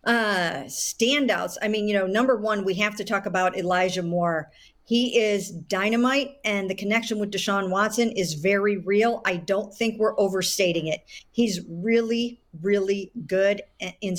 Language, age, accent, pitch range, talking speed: English, 50-69, American, 185-215 Hz, 160 wpm